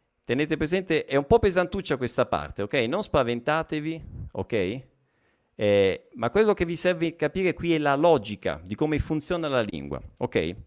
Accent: native